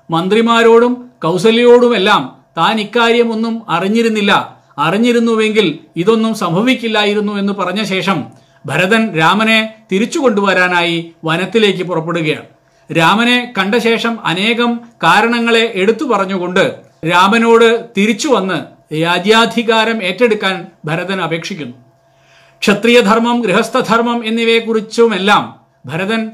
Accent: native